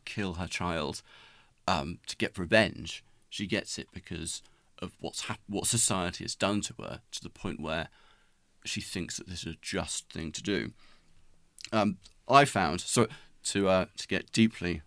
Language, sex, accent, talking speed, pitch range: English, male, British, 175 wpm, 85-100 Hz